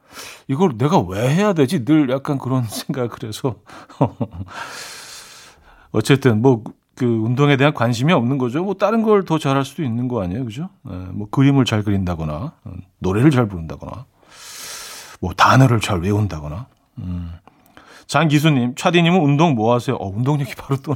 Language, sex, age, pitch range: Korean, male, 40-59, 105-150 Hz